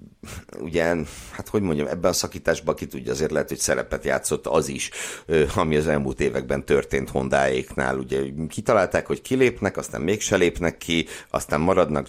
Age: 60-79